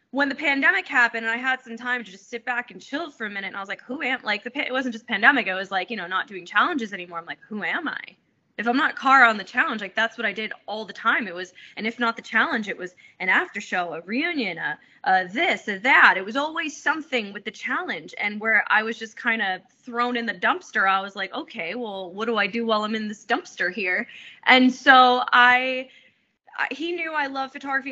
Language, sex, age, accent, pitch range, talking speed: English, female, 20-39, American, 215-270 Hz, 255 wpm